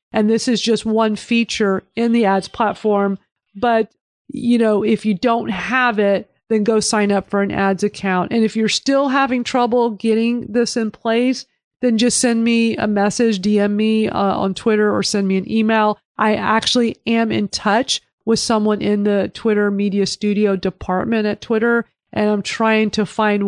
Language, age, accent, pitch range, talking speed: English, 40-59, American, 205-240 Hz, 185 wpm